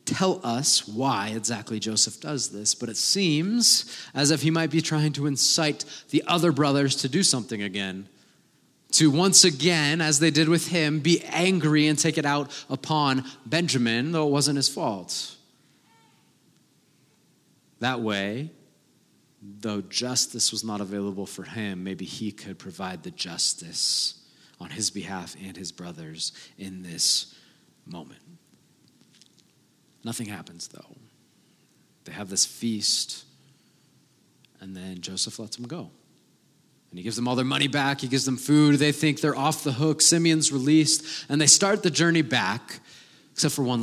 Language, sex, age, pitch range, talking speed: English, male, 30-49, 110-150 Hz, 155 wpm